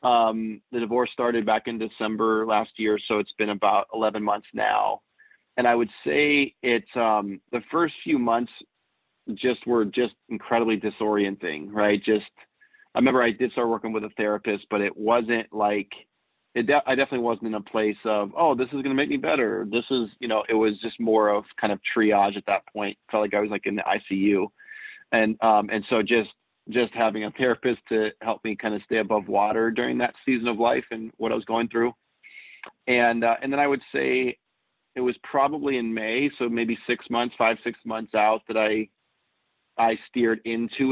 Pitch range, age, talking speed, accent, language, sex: 110-120 Hz, 40-59, 200 wpm, American, English, male